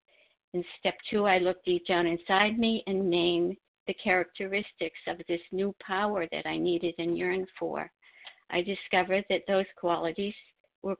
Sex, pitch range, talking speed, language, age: female, 175-205 Hz, 160 wpm, English, 60-79